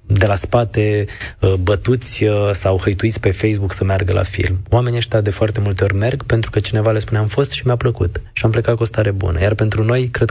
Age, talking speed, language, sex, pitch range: 20-39, 235 wpm, Romanian, male, 100-115 Hz